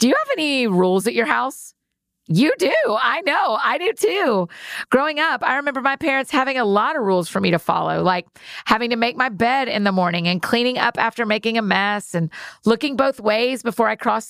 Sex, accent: female, American